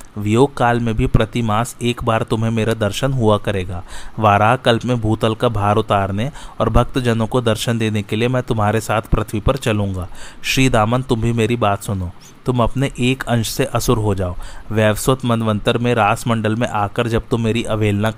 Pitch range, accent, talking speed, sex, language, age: 110-125 Hz, native, 200 wpm, male, Hindi, 30-49